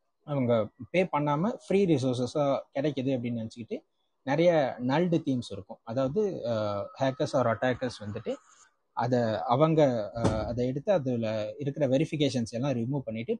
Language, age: Tamil, 20-39